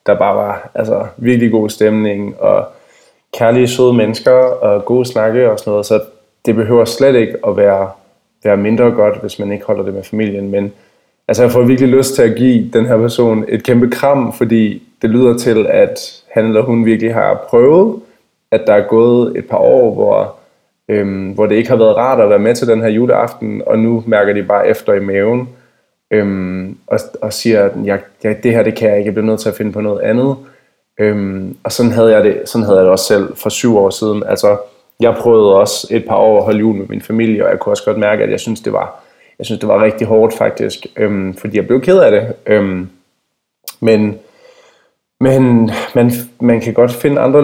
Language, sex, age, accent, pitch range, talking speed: Danish, male, 20-39, native, 105-120 Hz, 215 wpm